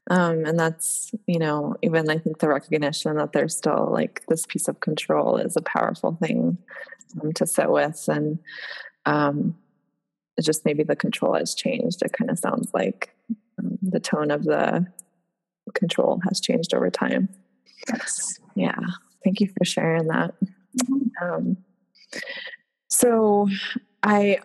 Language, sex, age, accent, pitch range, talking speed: English, female, 20-39, American, 155-205 Hz, 145 wpm